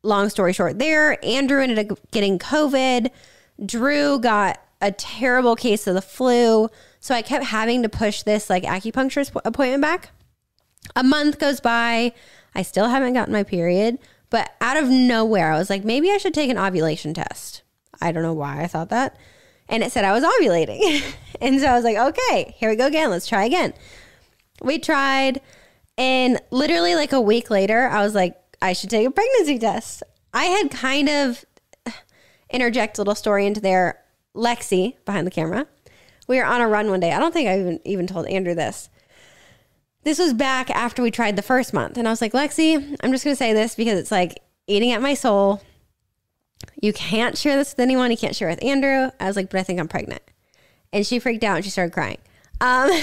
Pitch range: 200-270 Hz